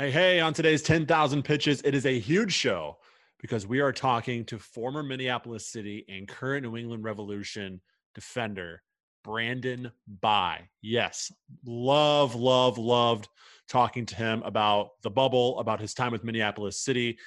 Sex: male